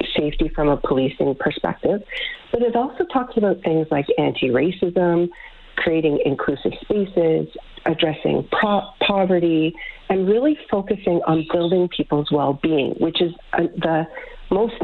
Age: 40-59